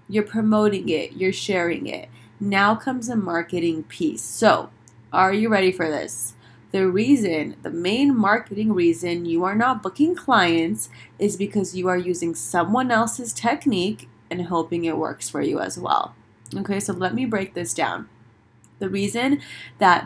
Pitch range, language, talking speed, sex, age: 165-220 Hz, English, 160 wpm, female, 20-39